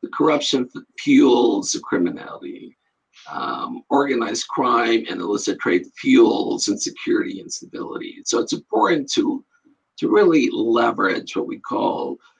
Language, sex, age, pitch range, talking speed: English, male, 50-69, 290-345 Hz, 120 wpm